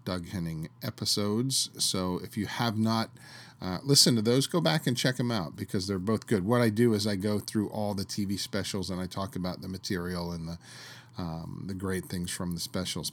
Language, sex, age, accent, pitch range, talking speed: English, male, 40-59, American, 95-120 Hz, 220 wpm